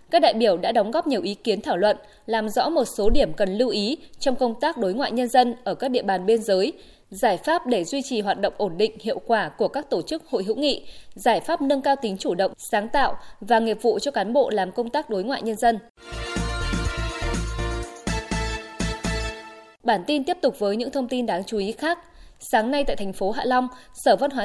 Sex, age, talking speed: female, 20-39, 230 wpm